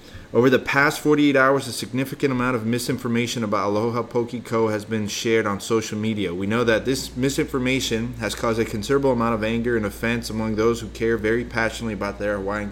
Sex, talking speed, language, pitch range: male, 200 wpm, English, 95-120 Hz